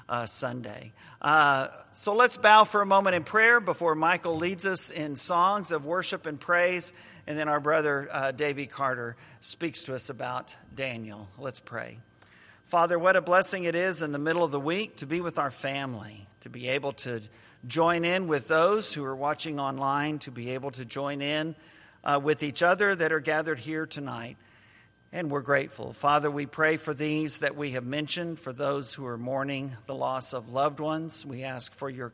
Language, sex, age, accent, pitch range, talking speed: English, male, 50-69, American, 130-160 Hz, 195 wpm